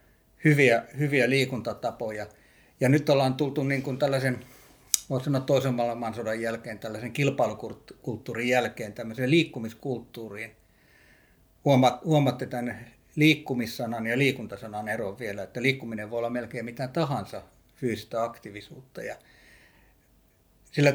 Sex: male